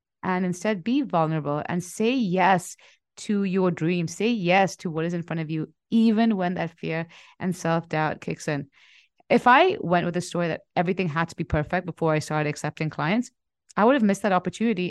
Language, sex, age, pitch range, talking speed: English, female, 30-49, 170-220 Hz, 200 wpm